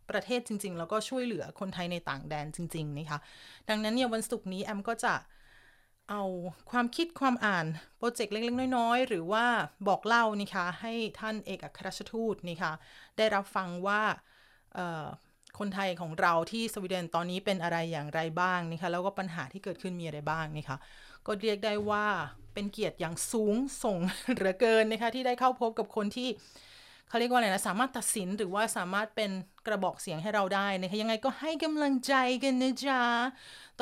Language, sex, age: Thai, female, 30-49